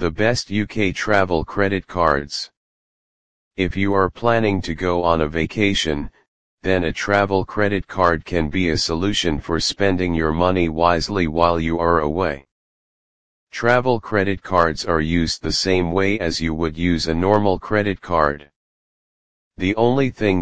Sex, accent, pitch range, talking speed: male, American, 80-100 Hz, 155 wpm